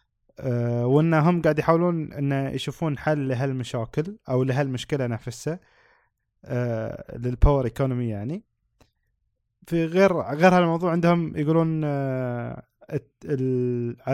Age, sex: 20-39, male